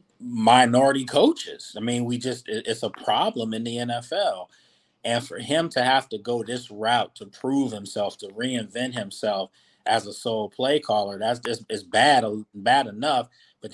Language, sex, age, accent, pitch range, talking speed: English, male, 30-49, American, 105-125 Hz, 155 wpm